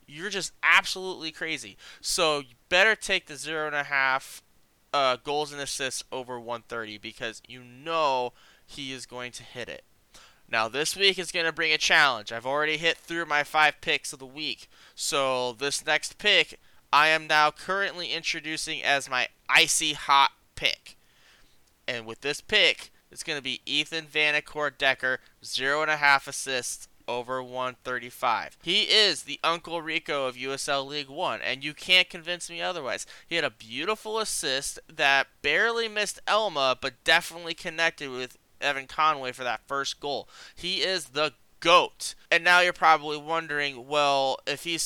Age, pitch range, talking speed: 20-39, 130-165 Hz, 160 wpm